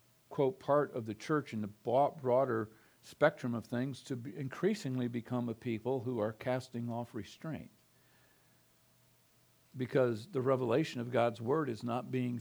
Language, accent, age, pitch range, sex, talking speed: English, American, 50-69, 120-155 Hz, male, 145 wpm